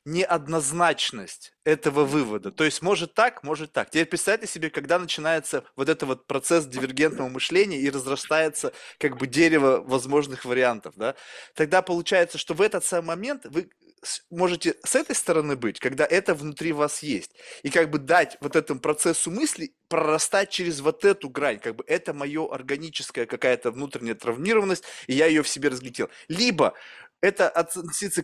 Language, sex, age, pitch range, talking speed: Russian, male, 20-39, 145-180 Hz, 160 wpm